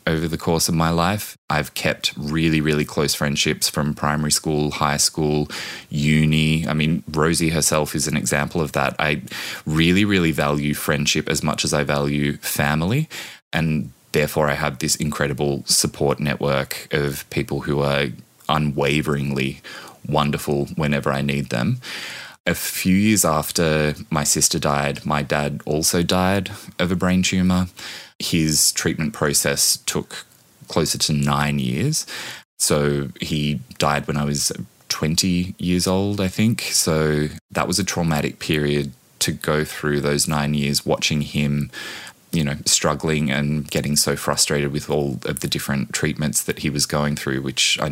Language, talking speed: English, 155 wpm